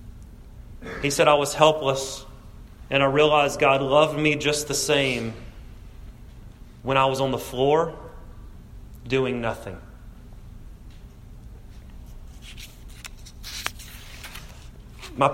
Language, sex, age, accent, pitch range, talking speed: English, male, 30-49, American, 110-150 Hz, 90 wpm